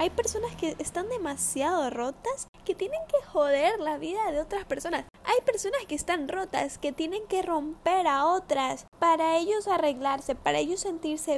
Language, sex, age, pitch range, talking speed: Spanish, female, 10-29, 275-325 Hz, 170 wpm